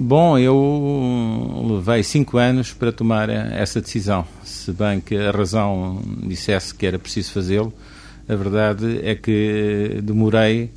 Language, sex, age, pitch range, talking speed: Portuguese, male, 50-69, 90-105 Hz, 135 wpm